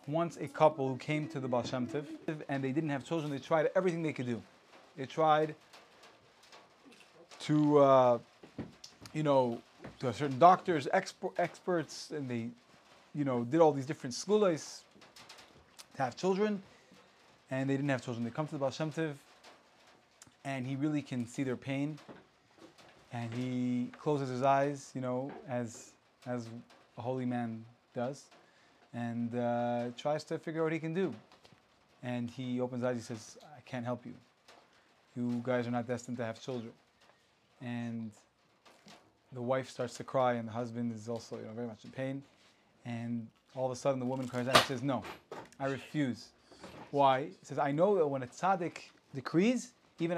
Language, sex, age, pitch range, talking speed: English, male, 30-49, 120-155 Hz, 170 wpm